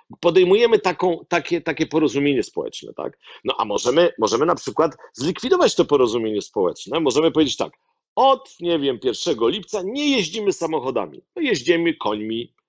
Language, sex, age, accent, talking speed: Polish, male, 50-69, native, 145 wpm